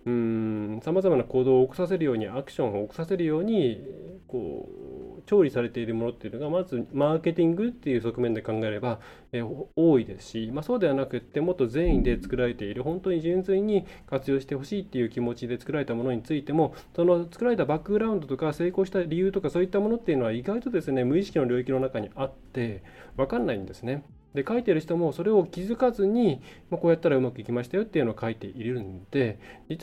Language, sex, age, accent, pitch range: Japanese, male, 20-39, native, 115-175 Hz